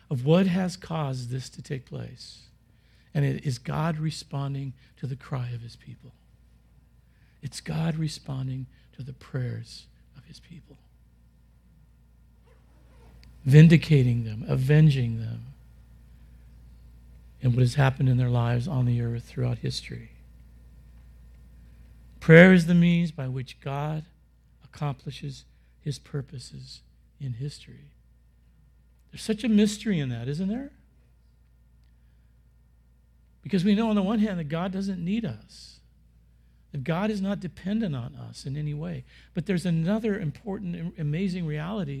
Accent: American